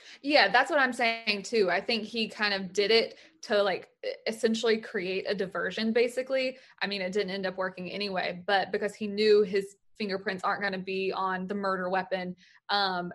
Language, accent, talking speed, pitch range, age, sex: English, American, 195 wpm, 195-230 Hz, 20-39, female